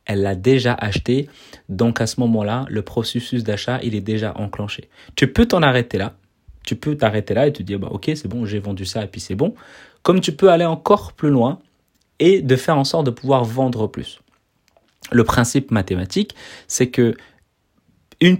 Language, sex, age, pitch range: French, male, 30-49, 110-135 Hz